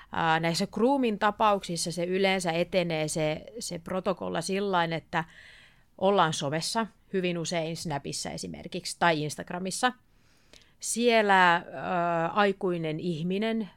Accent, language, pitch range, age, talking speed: native, Finnish, 160-205 Hz, 30-49, 100 wpm